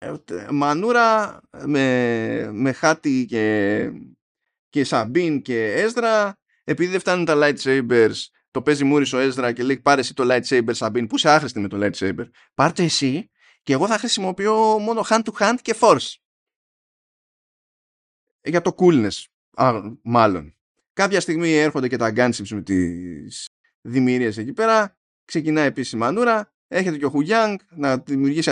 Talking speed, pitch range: 145 wpm, 130-215 Hz